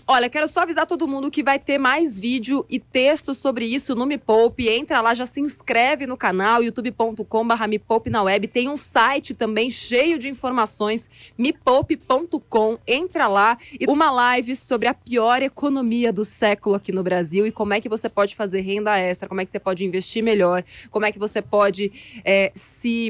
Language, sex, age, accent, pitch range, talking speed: Portuguese, female, 20-39, Brazilian, 210-260 Hz, 190 wpm